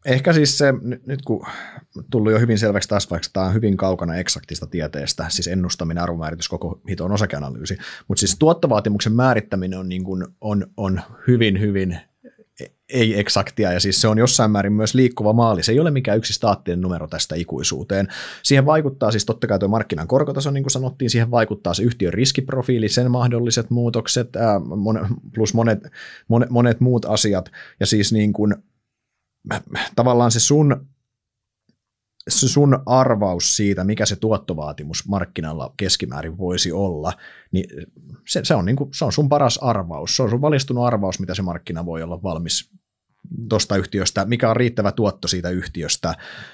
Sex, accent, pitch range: male, native, 95-120 Hz